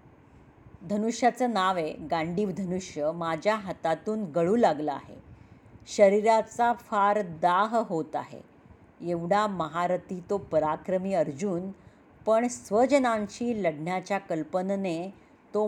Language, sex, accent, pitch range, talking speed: Marathi, female, native, 165-225 Hz, 95 wpm